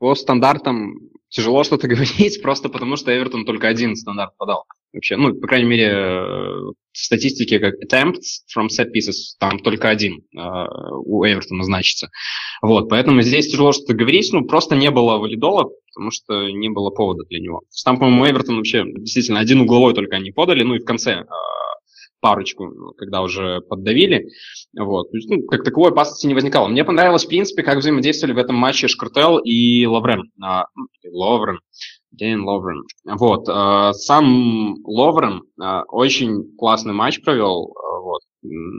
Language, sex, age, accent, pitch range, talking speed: Russian, male, 20-39, native, 105-140 Hz, 155 wpm